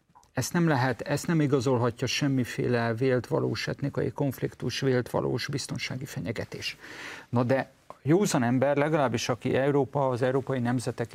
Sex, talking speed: male, 135 wpm